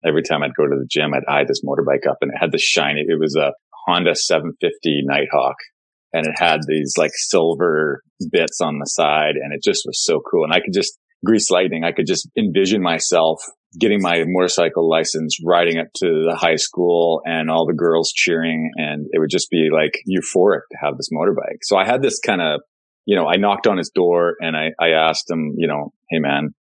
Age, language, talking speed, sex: 30-49, English, 220 wpm, male